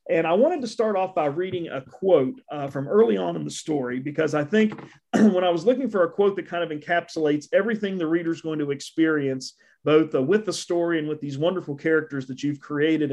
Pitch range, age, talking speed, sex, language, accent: 140-175 Hz, 40-59, 230 wpm, male, English, American